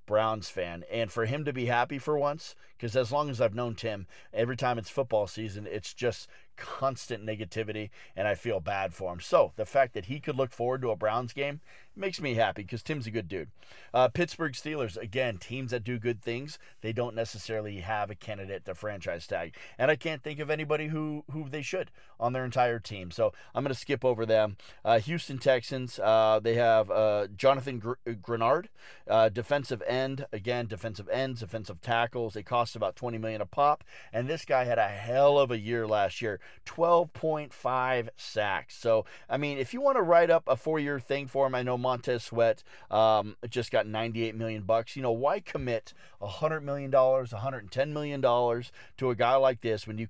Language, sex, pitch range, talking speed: English, male, 110-135 Hz, 200 wpm